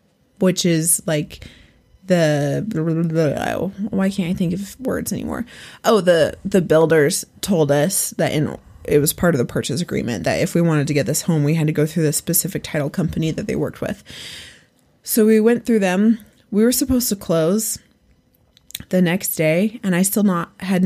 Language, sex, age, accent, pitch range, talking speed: English, female, 20-39, American, 160-200 Hz, 195 wpm